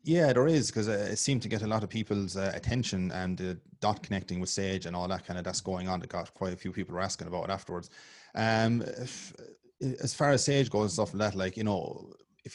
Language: English